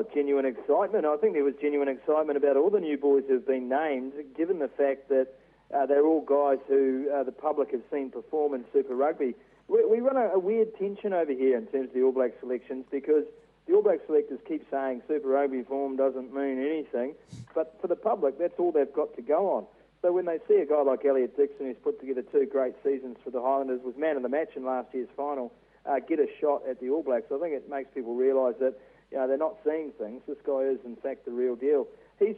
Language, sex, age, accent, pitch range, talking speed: English, male, 40-59, Australian, 130-210 Hz, 245 wpm